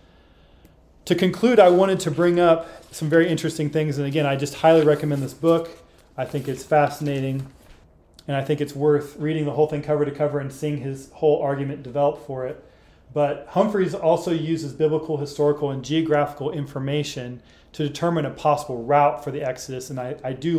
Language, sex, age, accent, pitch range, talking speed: English, male, 30-49, American, 140-155 Hz, 185 wpm